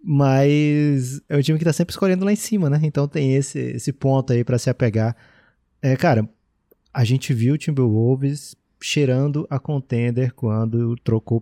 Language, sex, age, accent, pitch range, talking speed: Portuguese, male, 20-39, Brazilian, 115-140 Hz, 175 wpm